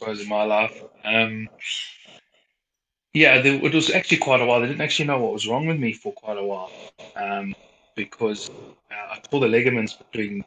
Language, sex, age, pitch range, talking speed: English, male, 20-39, 105-120 Hz, 190 wpm